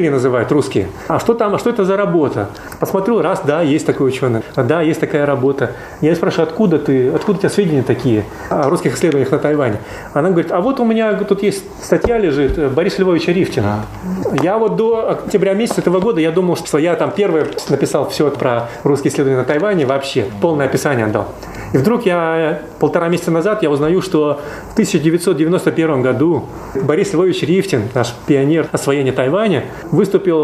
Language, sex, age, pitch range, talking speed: Russian, male, 30-49, 140-185 Hz, 180 wpm